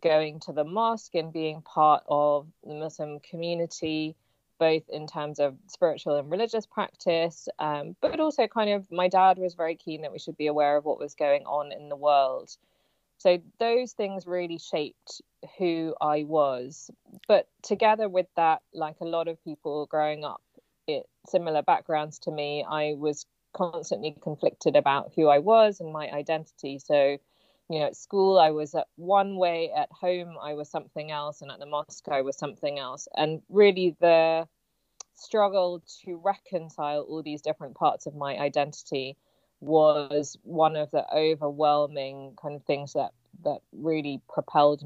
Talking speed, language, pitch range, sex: 170 wpm, English, 145-170 Hz, female